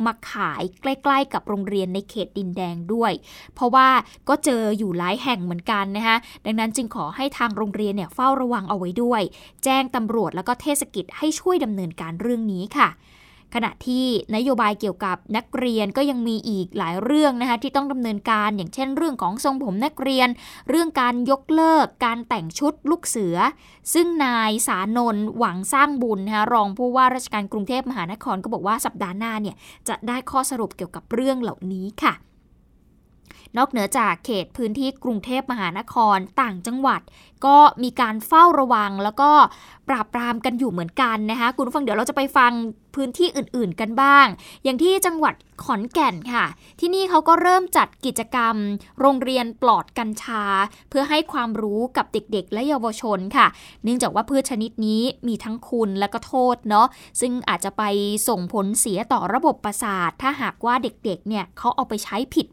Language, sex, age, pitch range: Thai, female, 20-39, 210-265 Hz